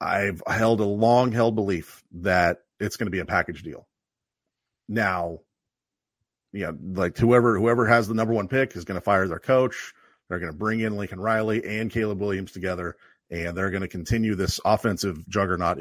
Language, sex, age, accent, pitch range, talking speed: English, male, 40-59, American, 95-120 Hz, 190 wpm